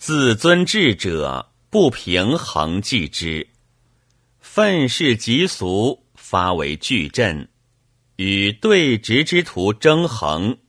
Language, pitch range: Chinese, 100-130 Hz